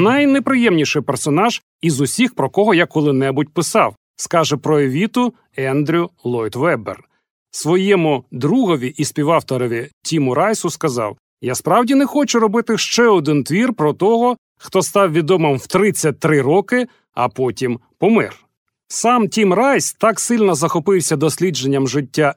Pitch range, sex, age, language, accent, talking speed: 145-220 Hz, male, 40-59, Ukrainian, native, 130 wpm